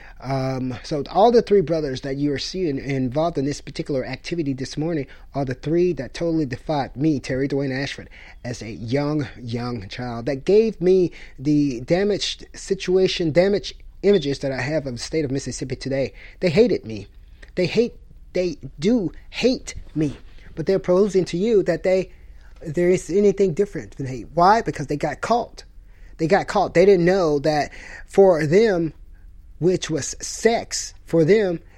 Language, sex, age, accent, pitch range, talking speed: English, male, 30-49, American, 130-180 Hz, 170 wpm